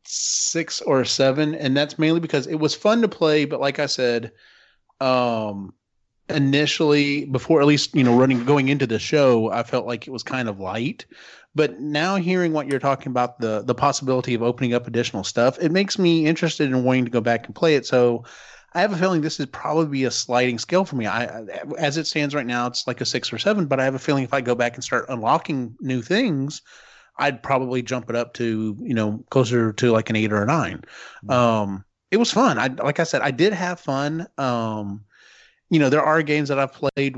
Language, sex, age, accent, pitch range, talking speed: English, male, 30-49, American, 120-150 Hz, 225 wpm